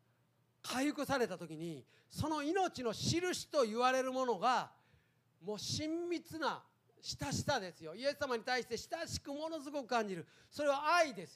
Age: 40-59